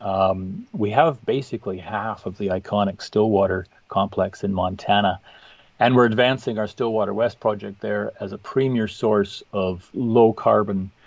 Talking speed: 140 wpm